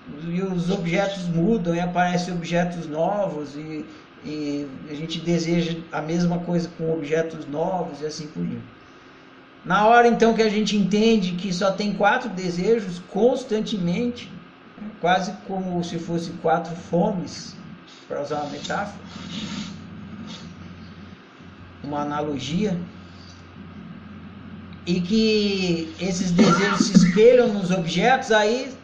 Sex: male